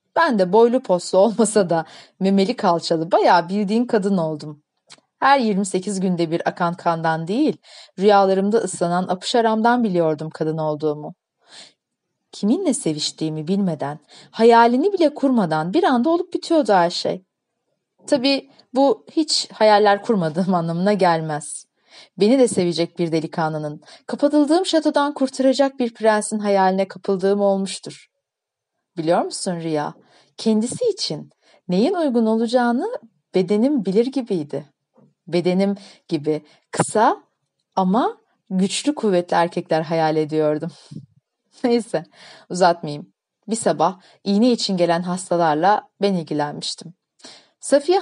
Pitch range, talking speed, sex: 170-235 Hz, 110 wpm, female